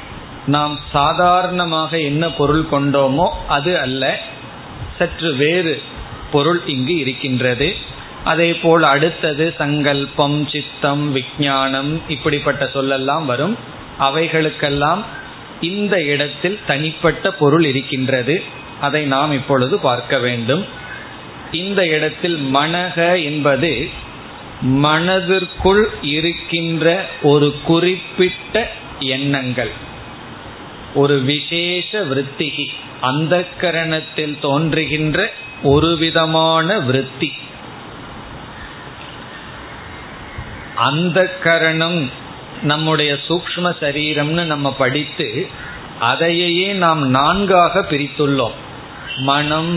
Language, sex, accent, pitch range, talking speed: Tamil, male, native, 140-170 Hz, 75 wpm